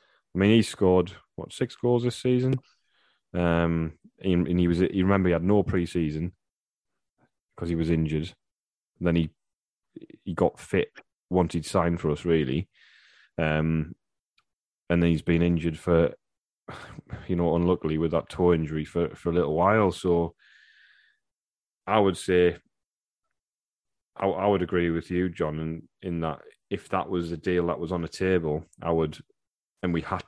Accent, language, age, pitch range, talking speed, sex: British, English, 10-29, 80-90 Hz, 165 wpm, male